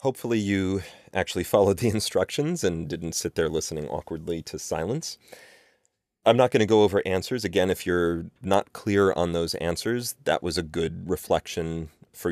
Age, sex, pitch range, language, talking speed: 30-49, male, 85-105 Hz, English, 170 wpm